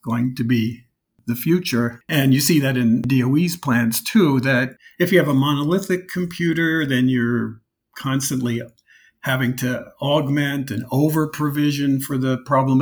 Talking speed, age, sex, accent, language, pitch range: 145 wpm, 50-69, male, American, English, 120-140 Hz